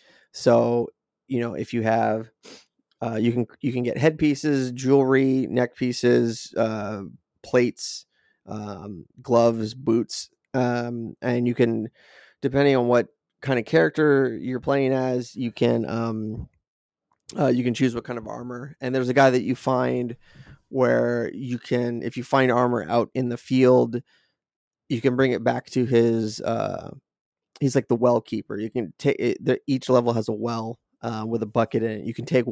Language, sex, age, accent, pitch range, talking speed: English, male, 20-39, American, 115-130 Hz, 175 wpm